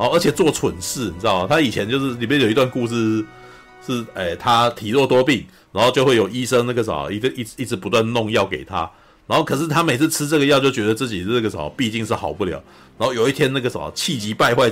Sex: male